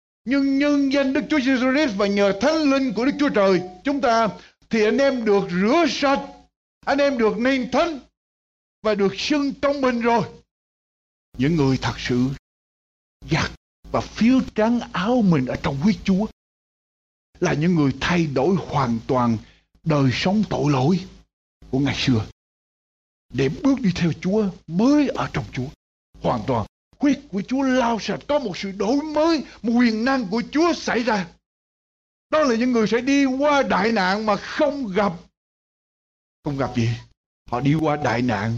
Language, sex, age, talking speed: Ukrainian, male, 60-79, 170 wpm